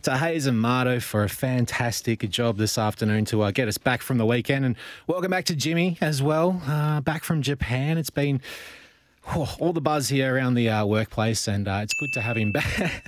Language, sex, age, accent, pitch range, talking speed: English, male, 20-39, Australian, 110-150 Hz, 220 wpm